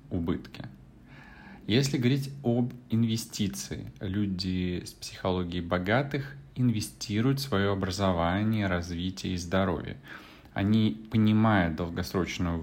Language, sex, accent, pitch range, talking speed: Russian, male, native, 90-115 Hz, 85 wpm